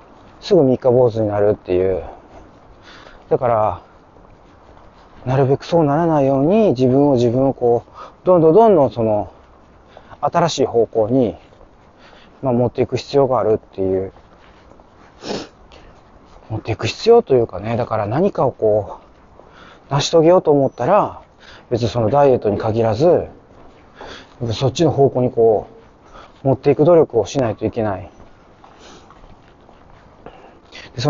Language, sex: Japanese, male